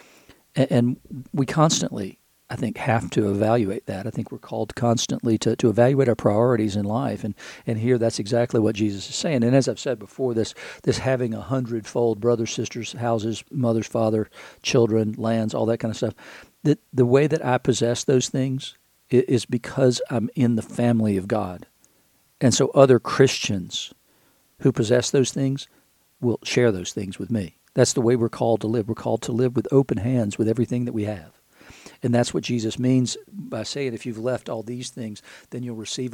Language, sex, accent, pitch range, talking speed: English, male, American, 110-130 Hz, 195 wpm